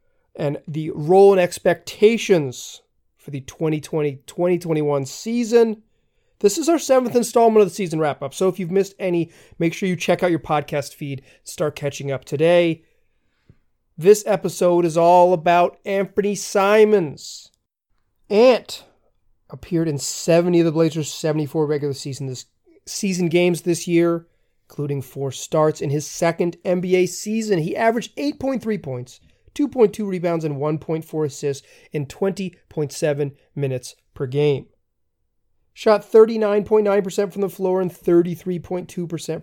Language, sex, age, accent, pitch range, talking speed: English, male, 30-49, American, 150-210 Hz, 130 wpm